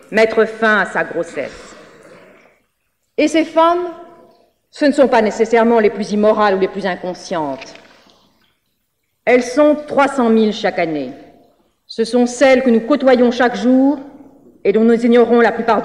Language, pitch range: French, 225-290 Hz